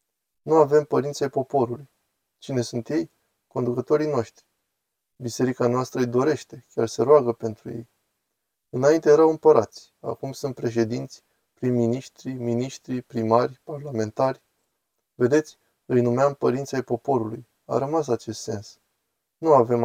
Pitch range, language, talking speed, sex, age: 115-130 Hz, Romanian, 120 wpm, male, 20-39